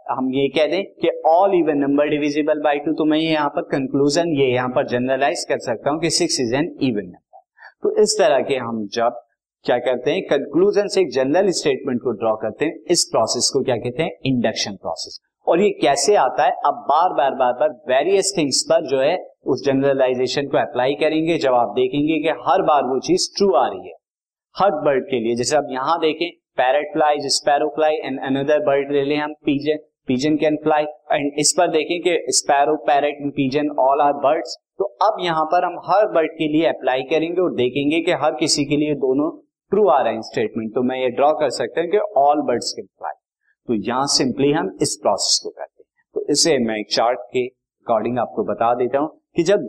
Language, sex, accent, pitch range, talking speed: Hindi, male, native, 130-165 Hz, 170 wpm